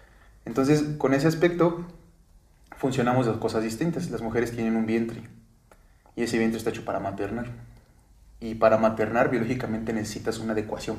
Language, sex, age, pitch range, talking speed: Spanish, male, 30-49, 110-130 Hz, 145 wpm